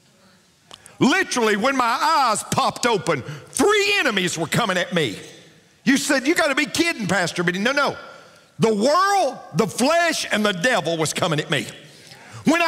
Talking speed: 160 wpm